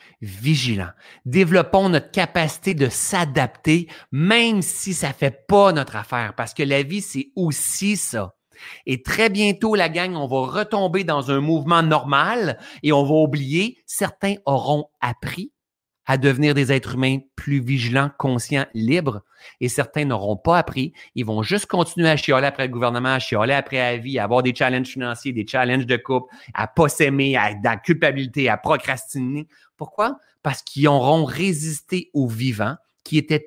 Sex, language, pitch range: male, French, 130-180 Hz